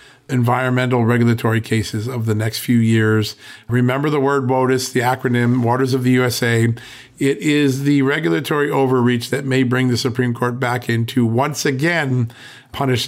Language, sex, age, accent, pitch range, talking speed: English, male, 50-69, American, 110-135 Hz, 160 wpm